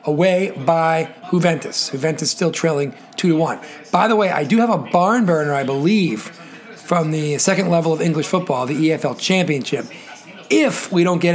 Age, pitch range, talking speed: 40-59, 155-190 Hz, 180 wpm